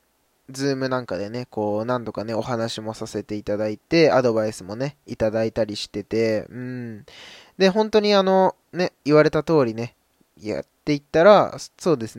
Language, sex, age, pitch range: Japanese, male, 20-39, 115-170 Hz